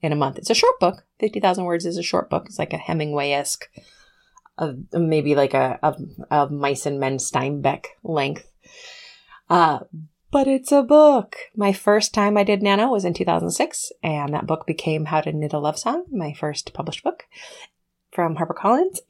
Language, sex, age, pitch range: English, female, 30-49, 150-205 Hz